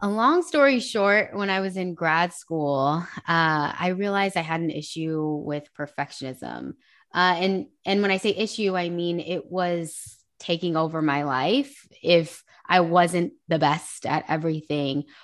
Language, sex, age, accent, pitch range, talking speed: English, female, 20-39, American, 160-195 Hz, 160 wpm